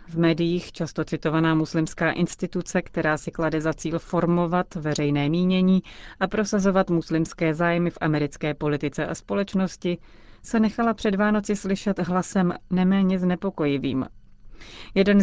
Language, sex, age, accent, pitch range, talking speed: Czech, female, 30-49, native, 150-190 Hz, 125 wpm